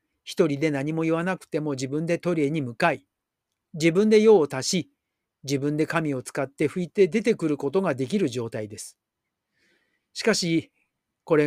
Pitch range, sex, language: 145-195 Hz, male, Japanese